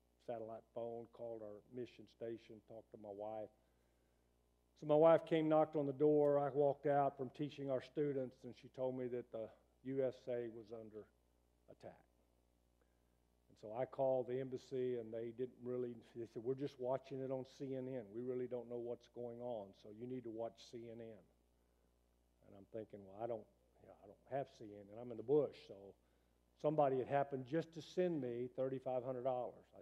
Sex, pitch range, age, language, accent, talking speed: male, 95-135 Hz, 50-69, English, American, 185 wpm